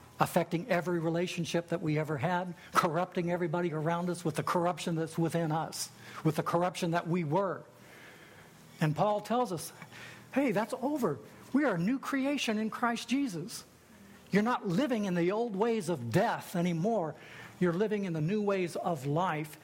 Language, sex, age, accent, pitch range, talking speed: English, male, 60-79, American, 150-195 Hz, 170 wpm